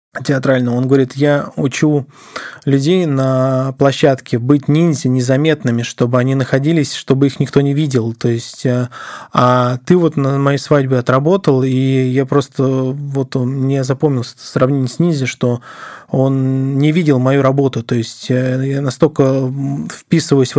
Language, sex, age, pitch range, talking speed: Russian, male, 20-39, 130-150 Hz, 145 wpm